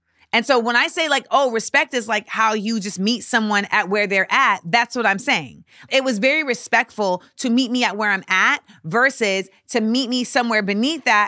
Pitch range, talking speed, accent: 195-245 Hz, 220 wpm, American